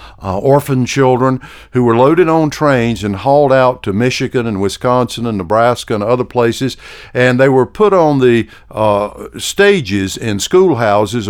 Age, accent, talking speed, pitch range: 50-69, American, 160 wpm, 105-135 Hz